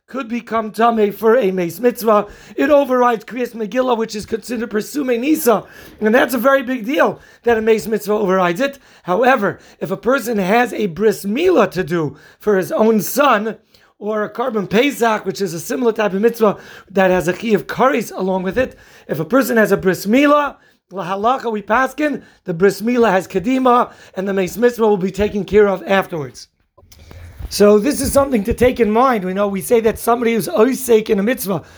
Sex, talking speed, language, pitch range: male, 195 wpm, English, 205-250 Hz